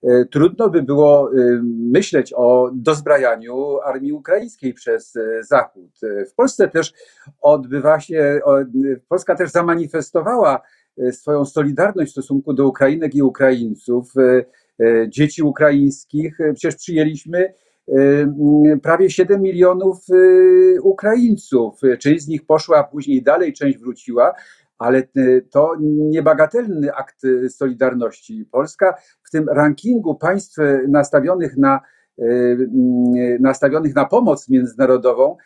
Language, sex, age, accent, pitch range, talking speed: Polish, male, 50-69, native, 135-190 Hz, 95 wpm